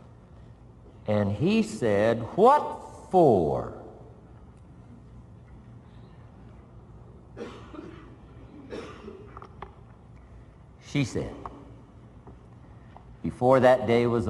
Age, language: 60-79, English